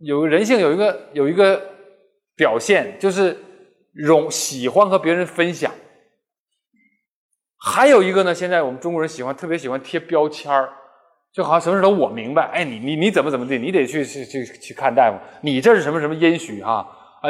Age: 20-39